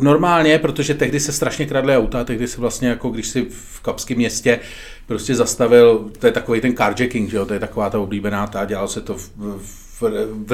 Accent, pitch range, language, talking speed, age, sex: native, 110-140 Hz, Czech, 215 wpm, 40-59, male